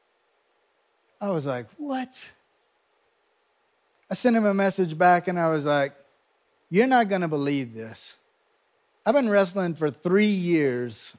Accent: American